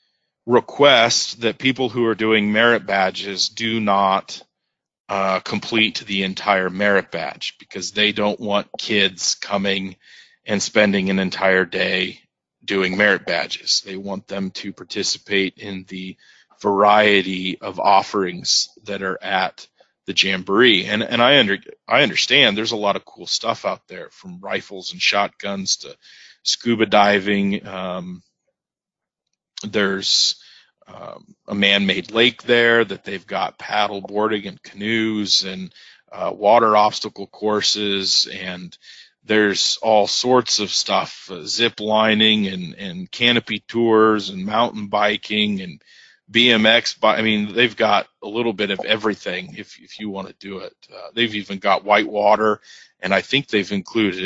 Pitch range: 100-110 Hz